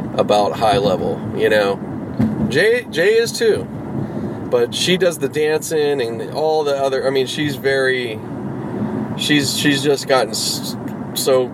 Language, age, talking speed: English, 30-49, 140 wpm